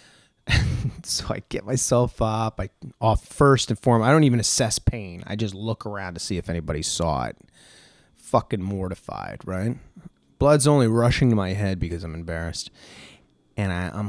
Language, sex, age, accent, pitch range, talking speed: English, male, 30-49, American, 95-125 Hz, 170 wpm